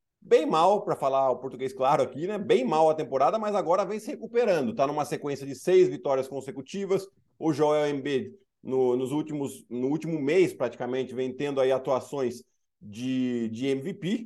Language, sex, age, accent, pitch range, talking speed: Portuguese, male, 50-69, Brazilian, 130-190 Hz, 170 wpm